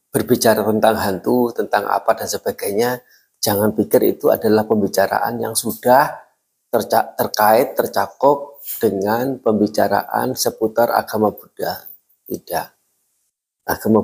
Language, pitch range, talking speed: Indonesian, 110-140 Hz, 105 wpm